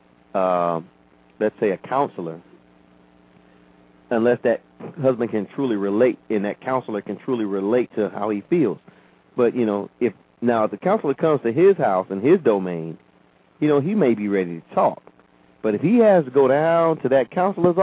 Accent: American